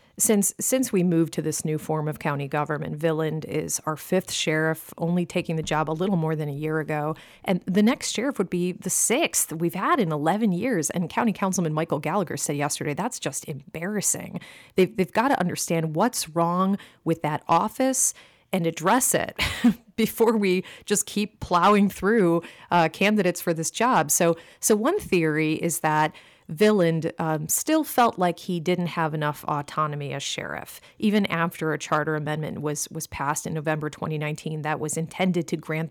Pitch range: 155-185 Hz